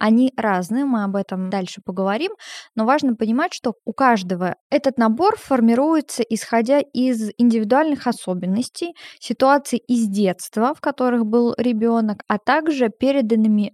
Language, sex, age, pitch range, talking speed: Russian, female, 20-39, 195-240 Hz, 130 wpm